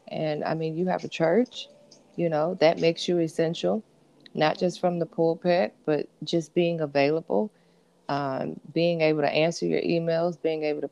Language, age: English, 20-39